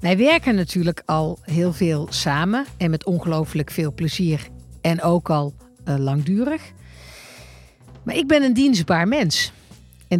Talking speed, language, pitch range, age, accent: 140 wpm, Dutch, 115-175 Hz, 50-69, Dutch